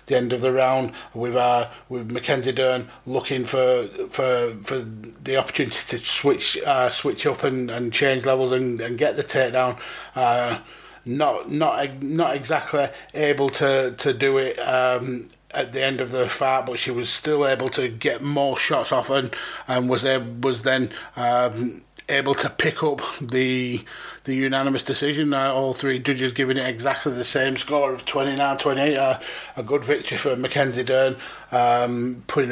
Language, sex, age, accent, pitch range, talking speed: English, male, 30-49, British, 125-140 Hz, 170 wpm